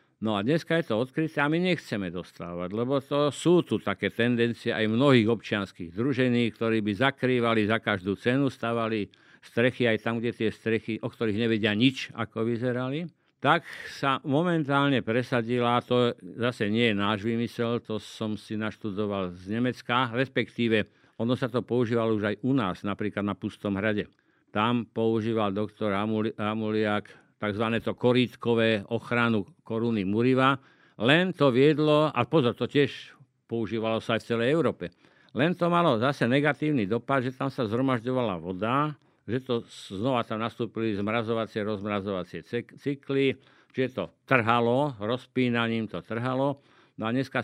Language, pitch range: Slovak, 110-130 Hz